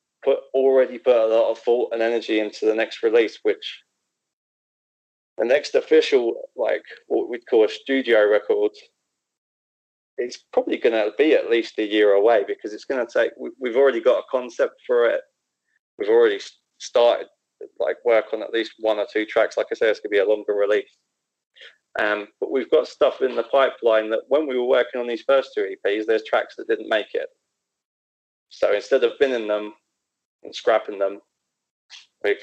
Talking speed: 190 wpm